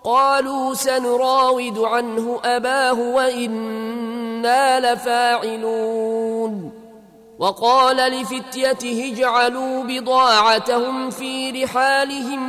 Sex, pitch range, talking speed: male, 225-260 Hz, 60 wpm